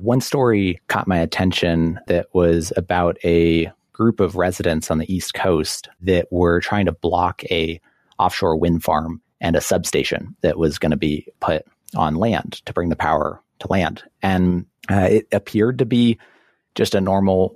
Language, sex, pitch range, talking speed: English, male, 85-95 Hz, 175 wpm